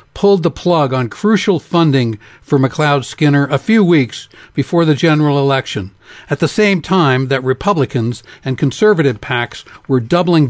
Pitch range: 130-160 Hz